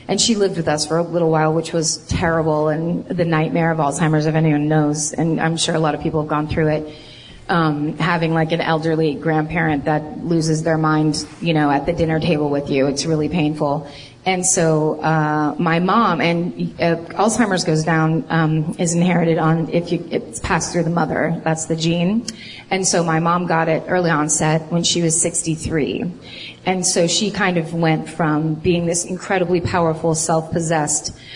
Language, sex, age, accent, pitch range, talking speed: English, female, 30-49, American, 155-175 Hz, 190 wpm